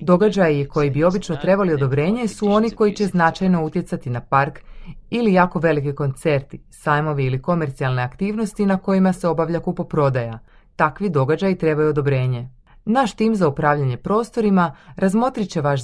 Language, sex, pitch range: Croatian, female, 140-195 Hz